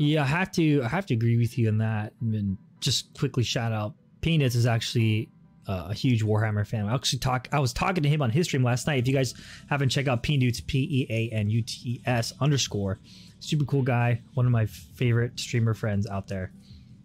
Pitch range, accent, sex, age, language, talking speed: 115-160 Hz, American, male, 20-39, English, 230 wpm